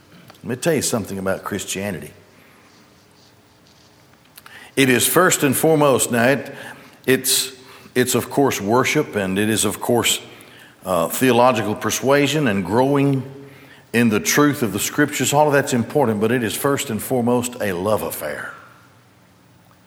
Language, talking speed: English, 140 wpm